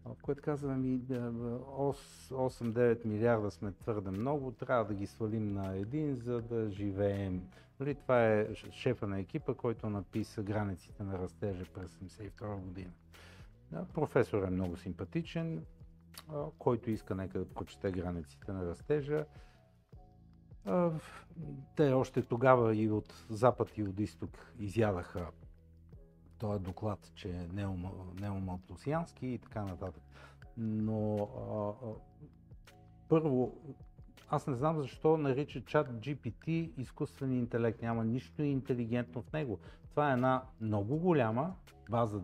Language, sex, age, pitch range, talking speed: Bulgarian, male, 50-69, 95-135 Hz, 125 wpm